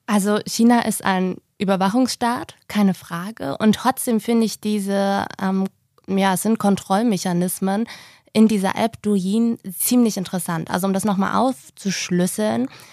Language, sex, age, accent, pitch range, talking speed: German, female, 20-39, German, 180-215 Hz, 130 wpm